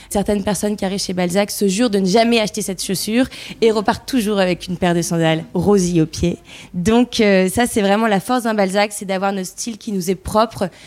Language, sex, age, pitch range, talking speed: French, female, 20-39, 190-225 Hz, 230 wpm